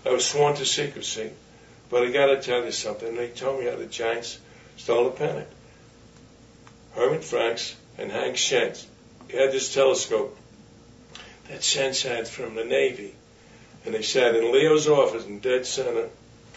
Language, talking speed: English, 160 wpm